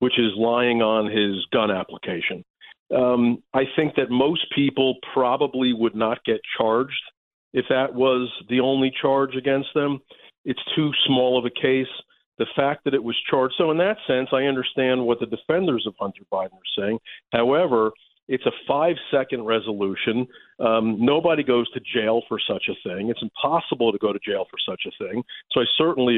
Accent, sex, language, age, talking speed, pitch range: American, male, English, 50-69, 185 wpm, 115-155 Hz